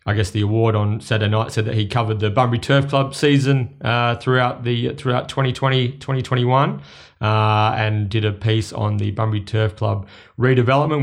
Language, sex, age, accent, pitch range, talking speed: English, male, 30-49, Australian, 110-135 Hz, 200 wpm